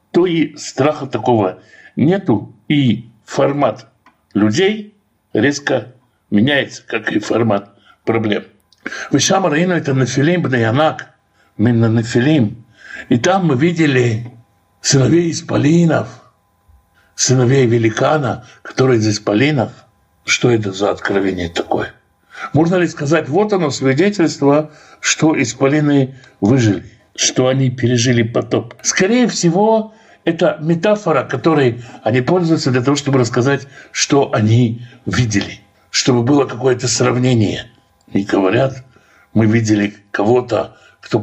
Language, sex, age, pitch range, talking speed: Russian, male, 60-79, 115-155 Hz, 110 wpm